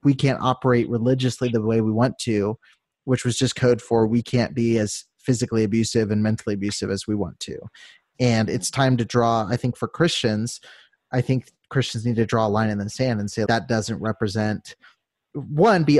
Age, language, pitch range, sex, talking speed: 30-49, English, 115-135 Hz, male, 205 wpm